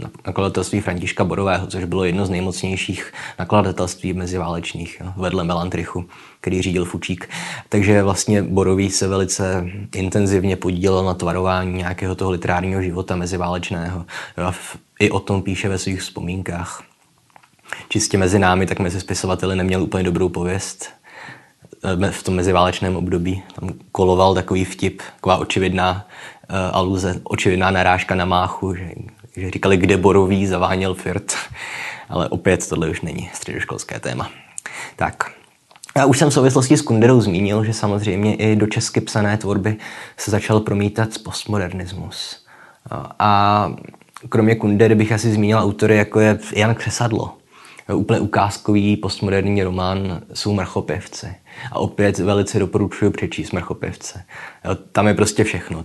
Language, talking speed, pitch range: Czech, 135 wpm, 90-105 Hz